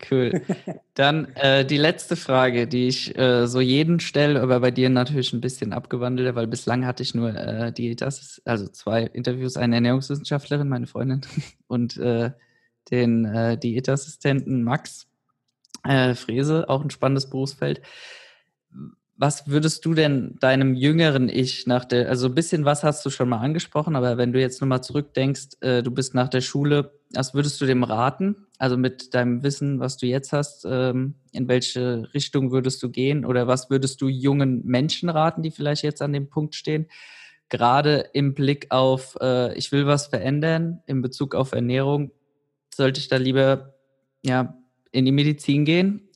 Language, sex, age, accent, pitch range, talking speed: German, male, 20-39, German, 125-145 Hz, 165 wpm